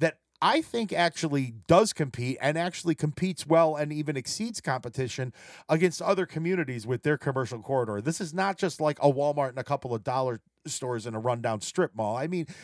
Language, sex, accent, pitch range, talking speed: English, male, American, 130-180 Hz, 190 wpm